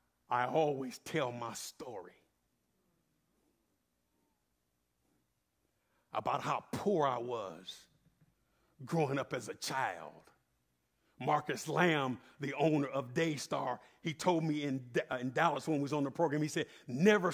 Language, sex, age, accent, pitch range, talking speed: English, male, 50-69, American, 155-200 Hz, 130 wpm